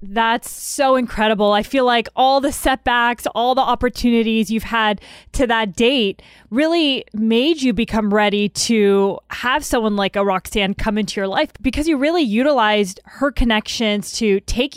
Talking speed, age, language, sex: 165 wpm, 20-39, English, female